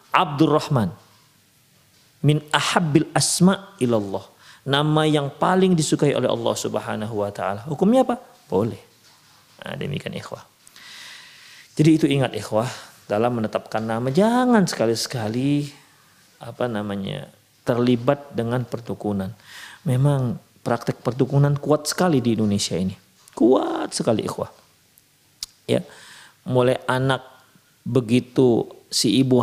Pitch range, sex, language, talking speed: 115-145 Hz, male, Indonesian, 100 wpm